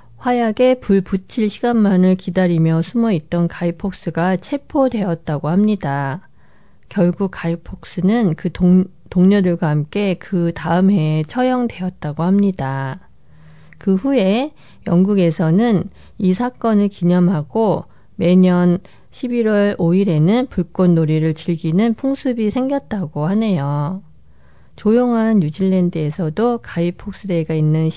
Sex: female